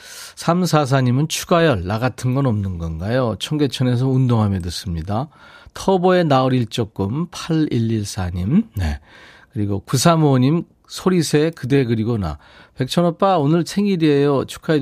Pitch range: 105-160 Hz